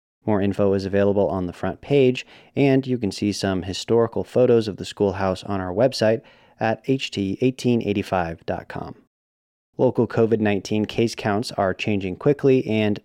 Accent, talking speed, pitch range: American, 145 wpm, 95-115 Hz